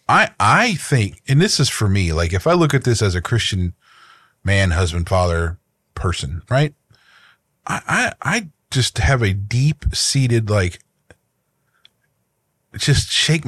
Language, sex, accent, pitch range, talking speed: English, male, American, 105-145 Hz, 145 wpm